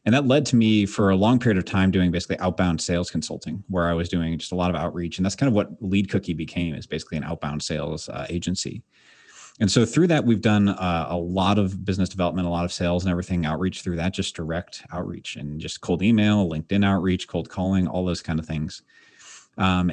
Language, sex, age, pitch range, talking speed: English, male, 30-49, 85-105 Hz, 235 wpm